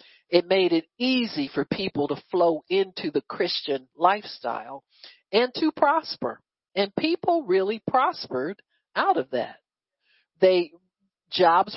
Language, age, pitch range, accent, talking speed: English, 50-69, 170-260 Hz, American, 115 wpm